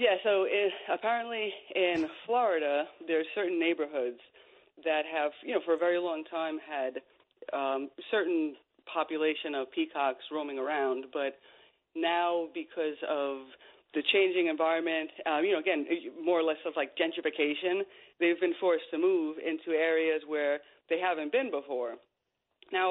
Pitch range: 155-205 Hz